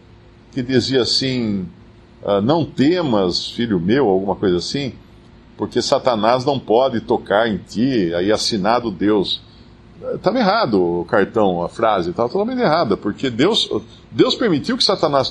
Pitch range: 110-155 Hz